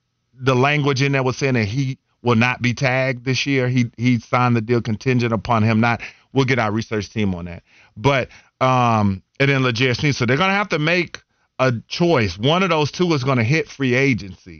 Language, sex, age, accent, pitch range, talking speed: English, male, 40-59, American, 110-135 Hz, 220 wpm